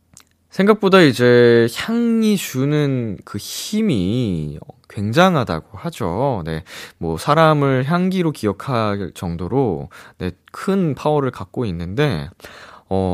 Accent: native